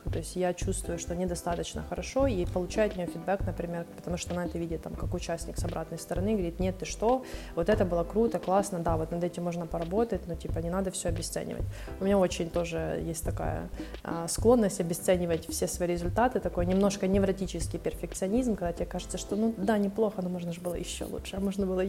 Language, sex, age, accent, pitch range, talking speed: Ukrainian, female, 20-39, native, 170-195 Hz, 210 wpm